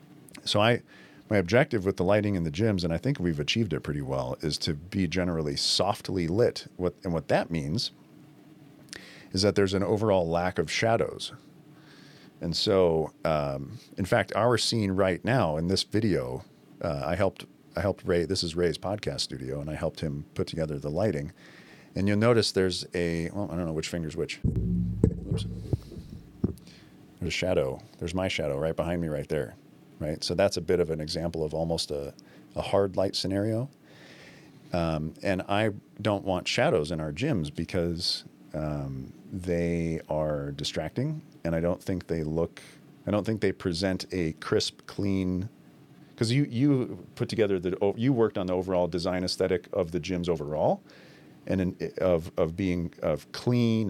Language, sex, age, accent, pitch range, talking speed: English, male, 40-59, American, 80-100 Hz, 175 wpm